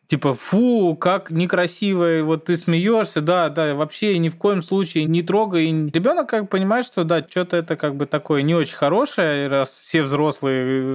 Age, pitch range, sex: 20-39, 135-165 Hz, male